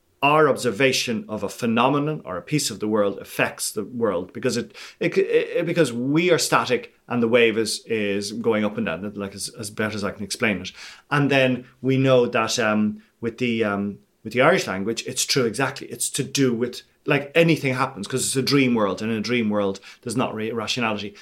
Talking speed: 220 wpm